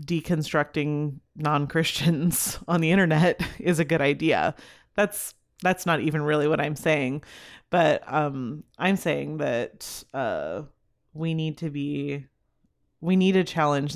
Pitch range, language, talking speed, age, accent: 150-175 Hz, English, 135 wpm, 30-49, American